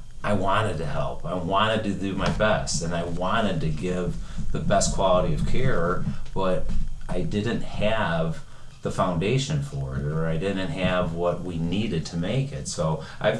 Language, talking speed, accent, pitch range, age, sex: English, 180 wpm, American, 90-110 Hz, 30-49, male